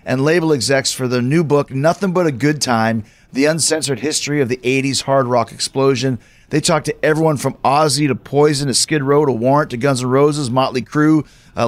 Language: English